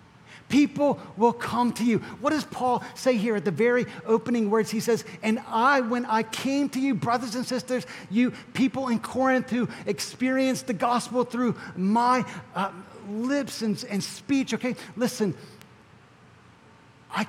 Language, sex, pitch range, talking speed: English, male, 200-245 Hz, 155 wpm